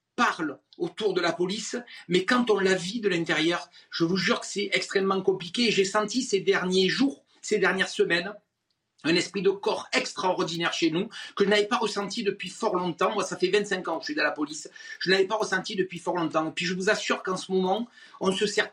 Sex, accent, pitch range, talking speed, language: male, French, 185-225 Hz, 225 wpm, French